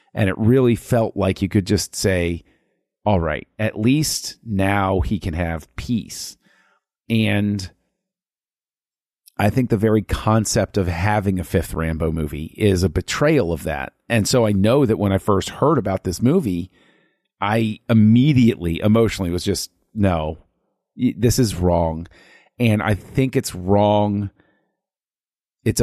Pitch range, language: 95-115 Hz, English